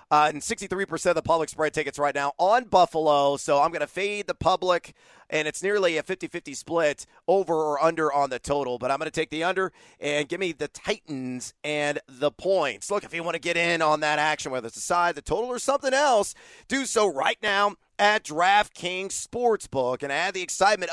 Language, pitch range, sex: English, 150-195 Hz, male